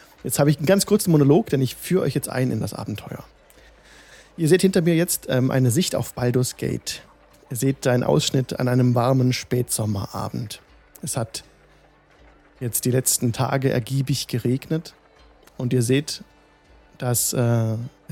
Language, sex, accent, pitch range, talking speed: German, male, German, 120-145 Hz, 160 wpm